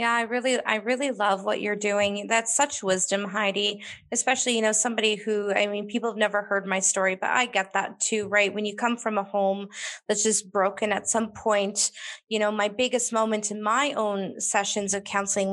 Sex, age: female, 20-39